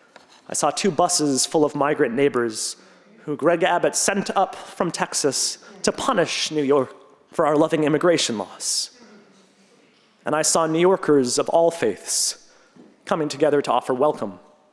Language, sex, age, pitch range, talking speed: English, male, 30-49, 145-185 Hz, 150 wpm